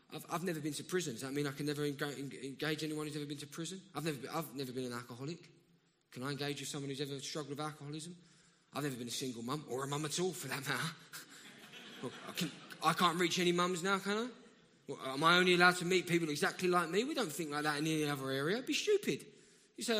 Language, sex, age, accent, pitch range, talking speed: English, male, 10-29, British, 145-185 Hz, 260 wpm